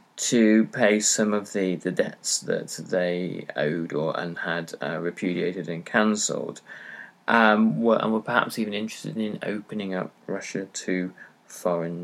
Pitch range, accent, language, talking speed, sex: 95-145 Hz, British, English, 150 wpm, male